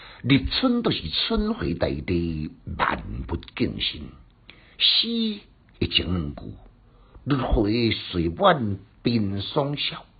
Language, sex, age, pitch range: Chinese, male, 60-79, 90-135 Hz